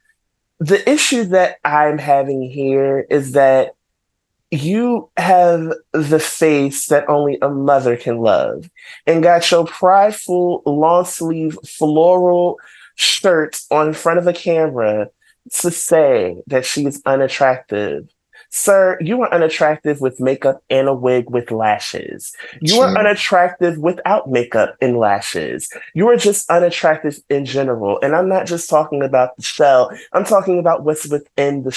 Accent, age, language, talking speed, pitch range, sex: American, 30-49, English, 140 wpm, 135-175 Hz, male